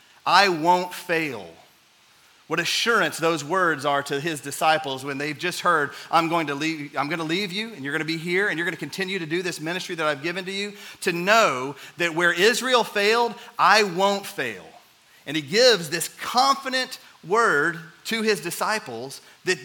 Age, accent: 40-59, American